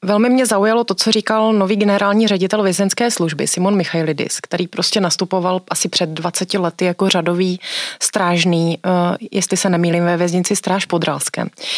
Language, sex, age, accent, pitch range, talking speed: Czech, female, 30-49, native, 180-220 Hz, 160 wpm